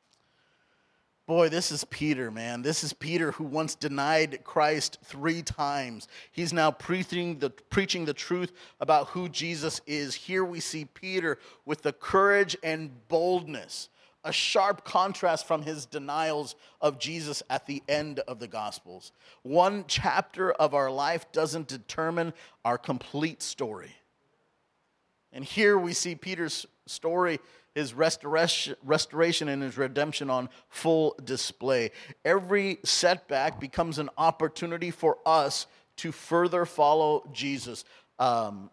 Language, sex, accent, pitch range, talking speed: English, male, American, 140-170 Hz, 130 wpm